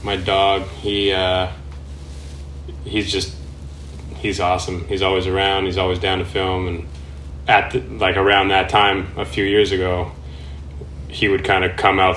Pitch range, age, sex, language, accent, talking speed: 70-100 Hz, 20-39, male, English, American, 155 wpm